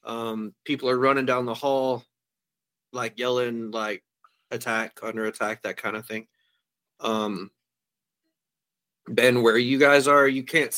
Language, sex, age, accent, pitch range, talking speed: English, male, 30-49, American, 115-135 Hz, 135 wpm